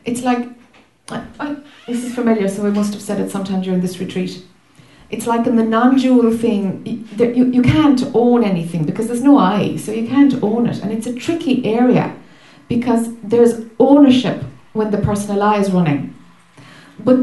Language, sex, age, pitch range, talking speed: English, female, 60-79, 195-250 Hz, 180 wpm